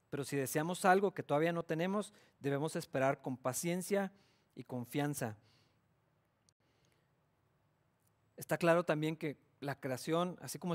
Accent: Mexican